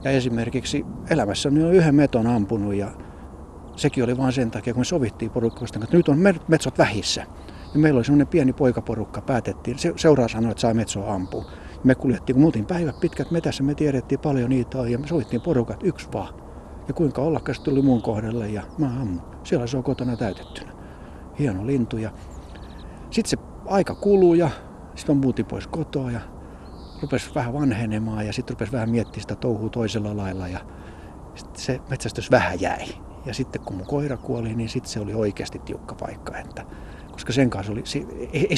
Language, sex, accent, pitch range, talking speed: Finnish, male, native, 100-135 Hz, 190 wpm